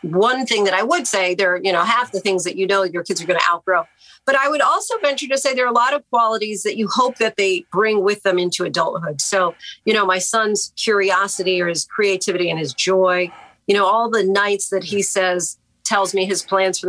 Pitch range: 180-215 Hz